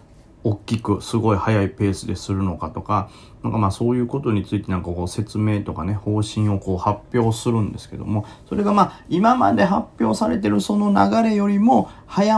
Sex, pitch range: male, 100-130 Hz